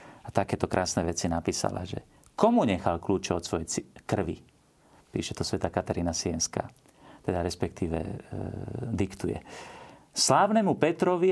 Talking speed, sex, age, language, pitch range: 120 wpm, male, 40-59, Slovak, 100-135 Hz